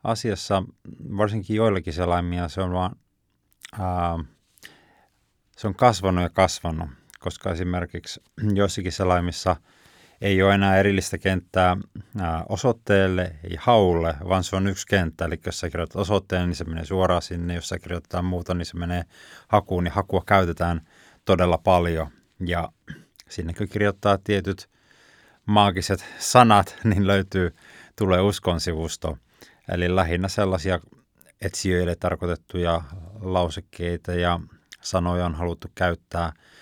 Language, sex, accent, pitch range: Finnish, male, native, 85-100 Hz